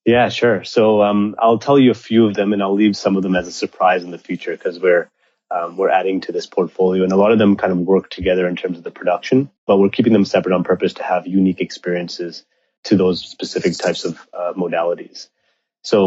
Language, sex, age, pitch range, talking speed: English, male, 30-49, 90-100 Hz, 240 wpm